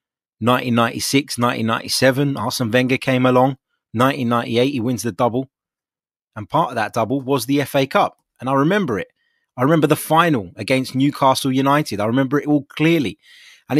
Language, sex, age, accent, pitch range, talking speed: English, male, 20-39, British, 120-155 Hz, 160 wpm